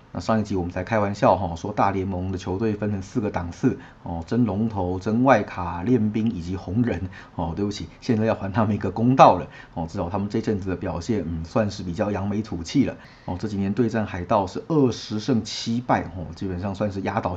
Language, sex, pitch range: Chinese, male, 90-110 Hz